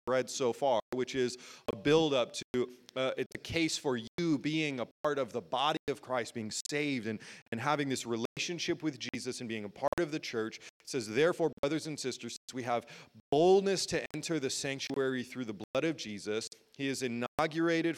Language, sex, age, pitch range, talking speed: English, male, 30-49, 125-160 Hz, 205 wpm